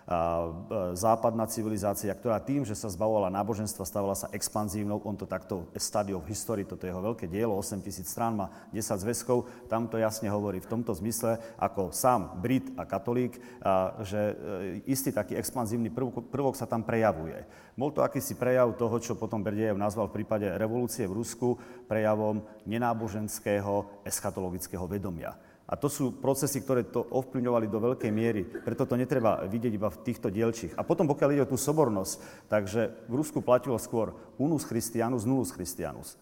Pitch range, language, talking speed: 100-120 Hz, Slovak, 170 wpm